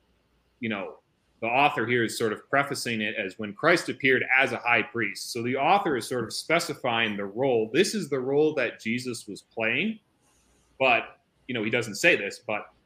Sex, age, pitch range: male, 30-49, 105-125 Hz